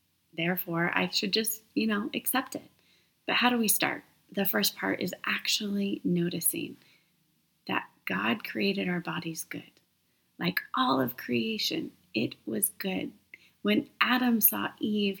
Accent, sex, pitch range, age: American, female, 170-215 Hz, 30-49